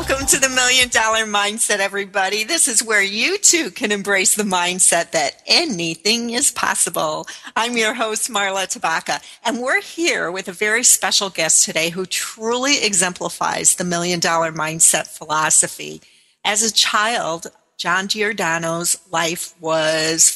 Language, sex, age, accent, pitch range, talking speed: English, female, 50-69, American, 170-220 Hz, 145 wpm